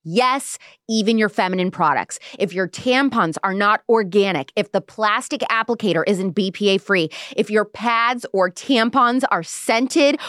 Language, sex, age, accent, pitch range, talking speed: English, female, 20-39, American, 200-275 Hz, 140 wpm